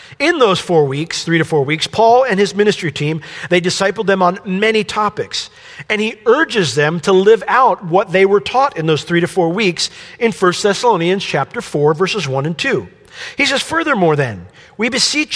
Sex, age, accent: male, 40-59, American